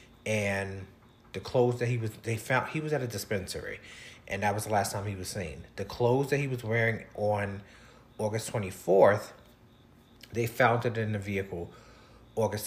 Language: English